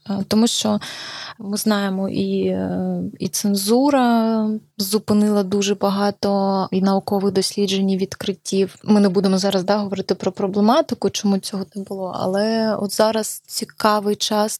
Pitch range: 195-215 Hz